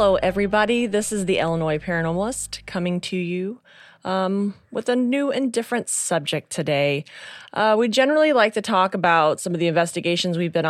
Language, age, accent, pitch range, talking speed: English, 30-49, American, 170-200 Hz, 175 wpm